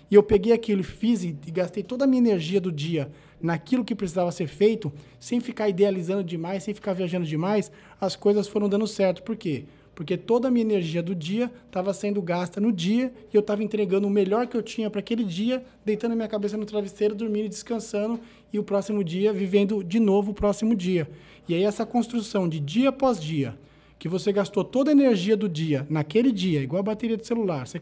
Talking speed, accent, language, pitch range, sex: 215 wpm, Brazilian, Portuguese, 170-215 Hz, male